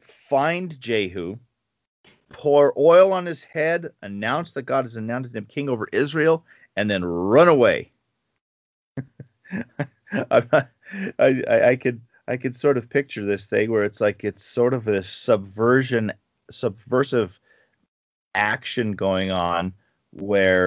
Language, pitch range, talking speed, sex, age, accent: English, 95-130 Hz, 130 wpm, male, 40-59, American